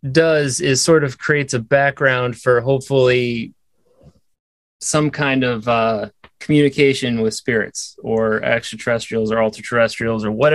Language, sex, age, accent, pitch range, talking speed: English, male, 30-49, American, 125-165 Hz, 125 wpm